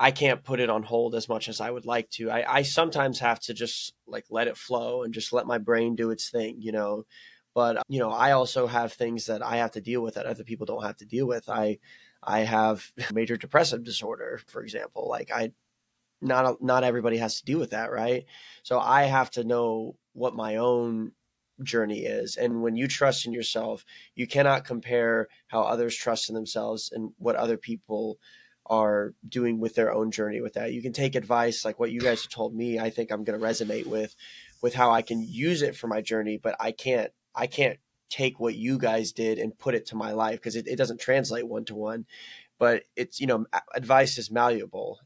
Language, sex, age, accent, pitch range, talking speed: English, male, 20-39, American, 110-120 Hz, 220 wpm